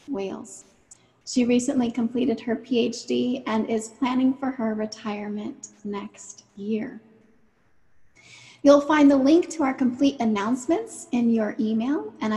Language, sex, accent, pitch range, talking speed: English, female, American, 220-265 Hz, 125 wpm